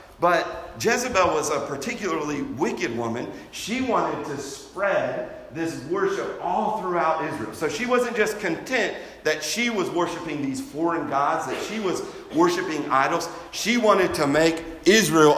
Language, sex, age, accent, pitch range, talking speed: English, male, 40-59, American, 125-175 Hz, 150 wpm